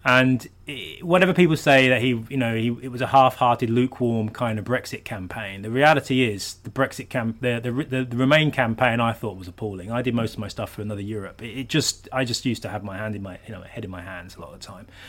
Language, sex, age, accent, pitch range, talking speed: English, male, 30-49, British, 105-130 Hz, 260 wpm